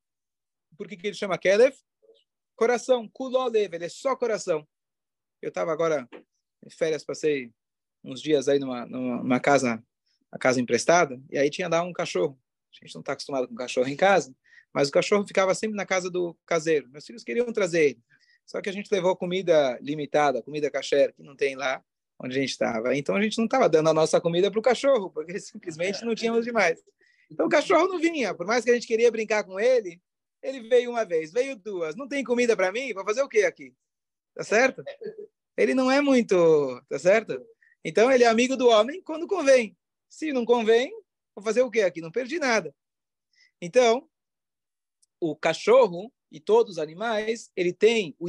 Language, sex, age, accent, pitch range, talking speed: Portuguese, male, 20-39, Brazilian, 165-255 Hz, 195 wpm